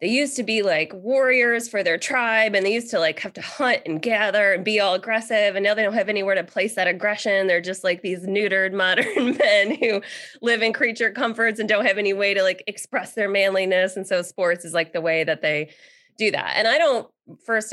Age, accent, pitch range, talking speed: 20-39, American, 175-215 Hz, 235 wpm